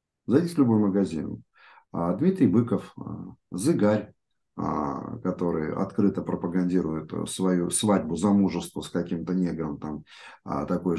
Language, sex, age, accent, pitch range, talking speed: Russian, male, 50-69, native, 90-110 Hz, 105 wpm